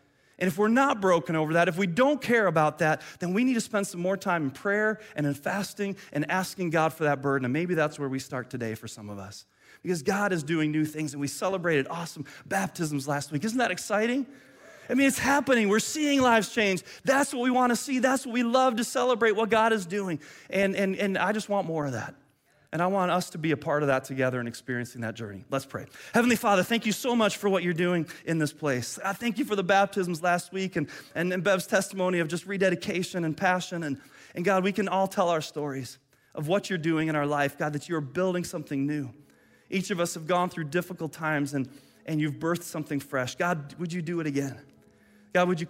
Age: 30-49